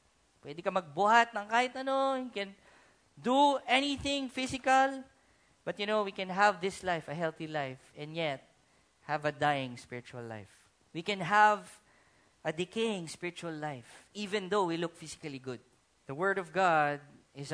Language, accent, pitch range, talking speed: English, Filipino, 150-235 Hz, 160 wpm